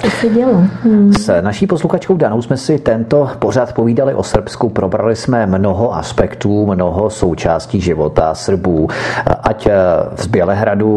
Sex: male